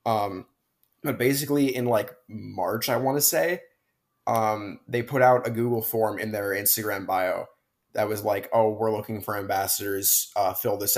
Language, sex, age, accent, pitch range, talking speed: English, male, 20-39, American, 105-125 Hz, 175 wpm